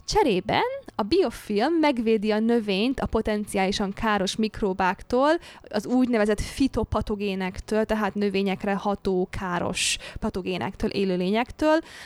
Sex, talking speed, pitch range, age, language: female, 95 wpm, 190-235 Hz, 20-39, Hungarian